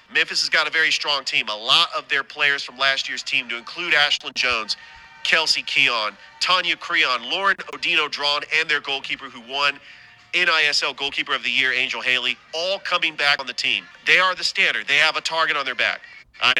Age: 40-59